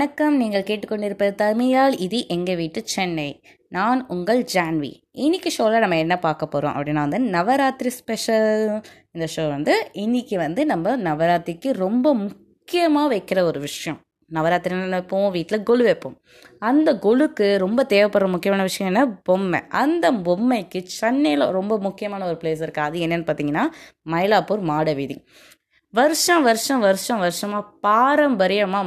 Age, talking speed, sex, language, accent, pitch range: 20-39, 125 wpm, female, Tamil, native, 180-250 Hz